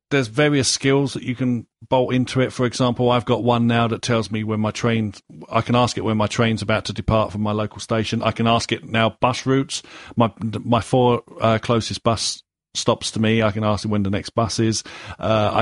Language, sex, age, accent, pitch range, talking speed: English, male, 40-59, British, 110-130 Hz, 240 wpm